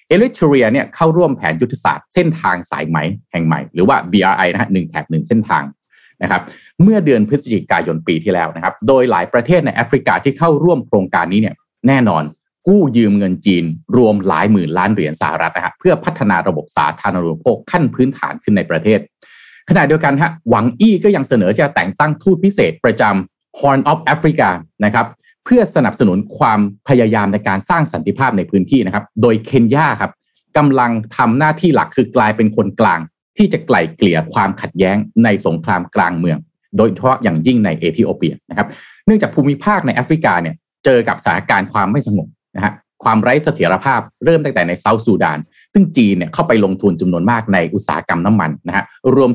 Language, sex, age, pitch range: Thai, male, 30-49, 100-165 Hz